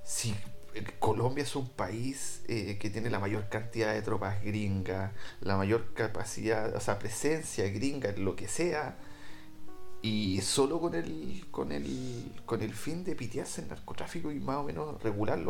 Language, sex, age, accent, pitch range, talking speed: Spanish, male, 30-49, Argentinian, 100-140 Hz, 165 wpm